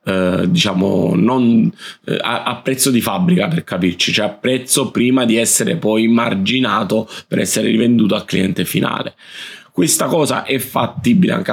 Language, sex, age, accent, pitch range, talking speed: Italian, male, 30-49, native, 110-130 Hz, 140 wpm